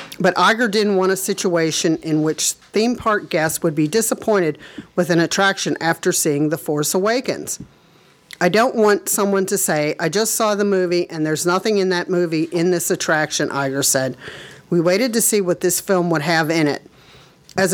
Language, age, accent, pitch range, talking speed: English, 40-59, American, 160-195 Hz, 190 wpm